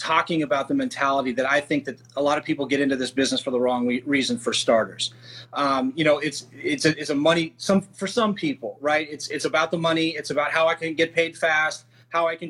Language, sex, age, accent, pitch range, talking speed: English, male, 30-49, American, 135-170 Hz, 255 wpm